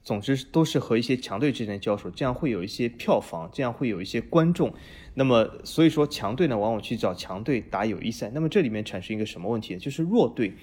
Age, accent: 20-39, native